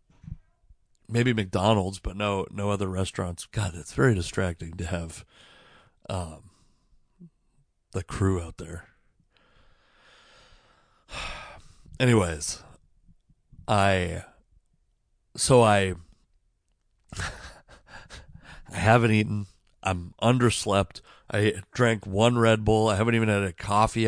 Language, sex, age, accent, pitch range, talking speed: English, male, 40-59, American, 90-115 Hz, 95 wpm